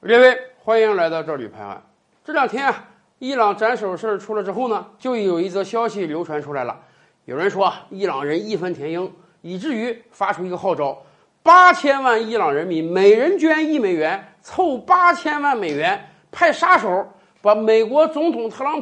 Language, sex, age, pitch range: Chinese, male, 50-69, 195-300 Hz